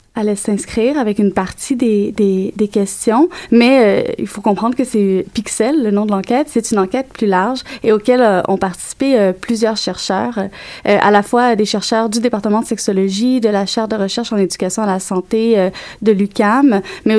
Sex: female